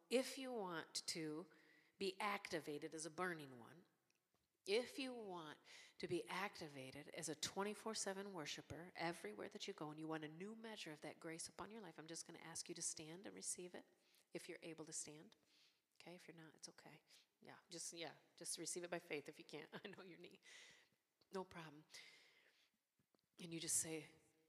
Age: 40-59